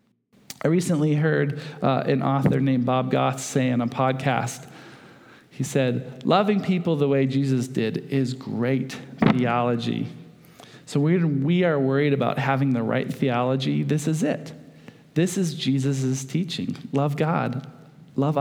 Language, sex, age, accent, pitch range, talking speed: English, male, 40-59, American, 135-175 Hz, 145 wpm